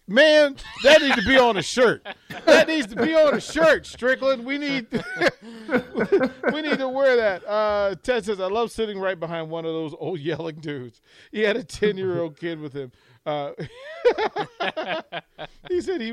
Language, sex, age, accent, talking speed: English, male, 40-59, American, 180 wpm